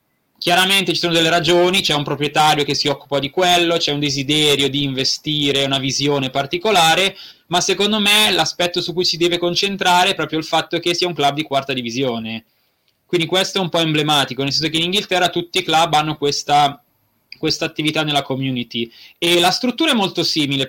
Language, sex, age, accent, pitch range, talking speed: Italian, male, 20-39, native, 140-190 Hz, 195 wpm